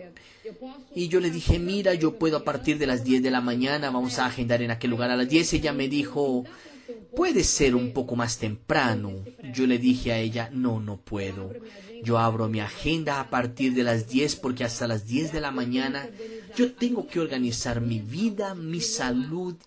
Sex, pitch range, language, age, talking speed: male, 125-195 Hz, Portuguese, 30-49, 200 wpm